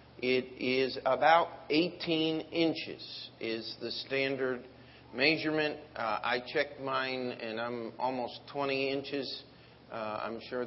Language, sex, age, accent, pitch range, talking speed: English, male, 50-69, American, 125-155 Hz, 120 wpm